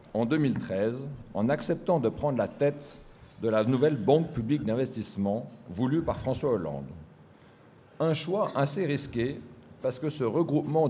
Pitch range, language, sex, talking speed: 115-150 Hz, French, male, 145 wpm